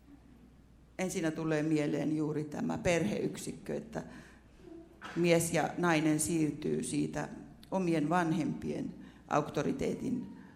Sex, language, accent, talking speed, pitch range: female, Finnish, native, 85 wpm, 145-170 Hz